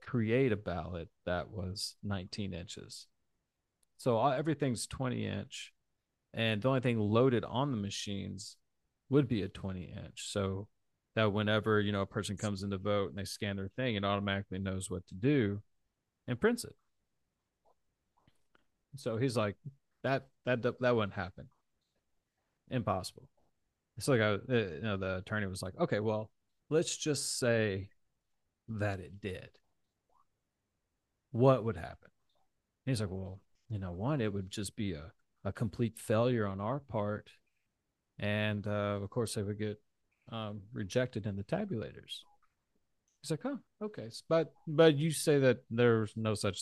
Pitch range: 100-125 Hz